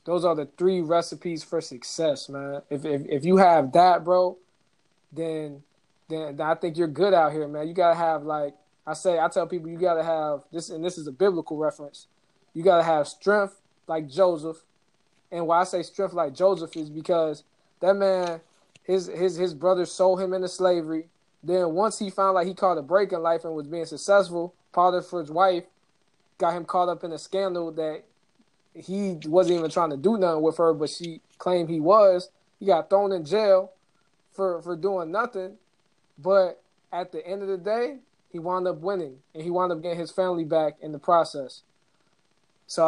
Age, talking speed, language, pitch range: 20-39, 195 wpm, English, 160-185 Hz